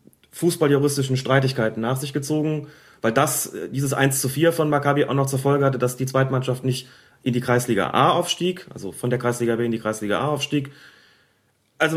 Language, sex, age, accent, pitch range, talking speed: German, male, 30-49, German, 125-155 Hz, 190 wpm